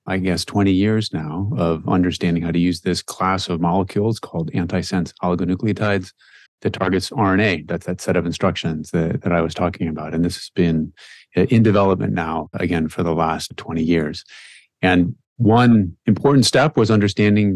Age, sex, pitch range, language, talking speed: 30-49, male, 85-105 Hz, English, 170 wpm